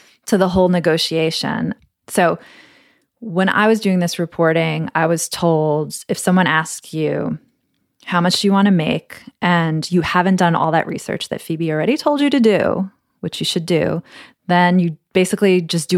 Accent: American